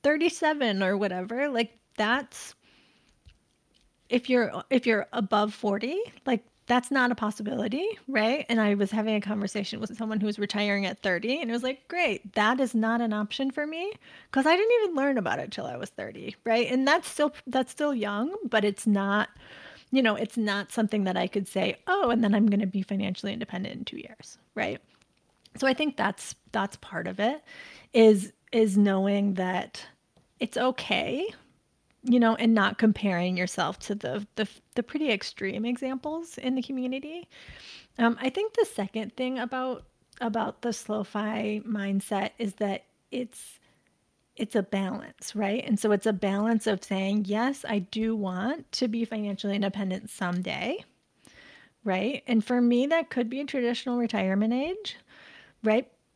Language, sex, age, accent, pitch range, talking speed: English, female, 30-49, American, 205-255 Hz, 170 wpm